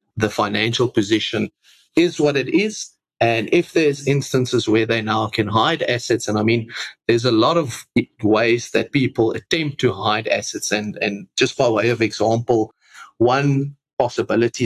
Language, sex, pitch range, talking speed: English, male, 110-140 Hz, 165 wpm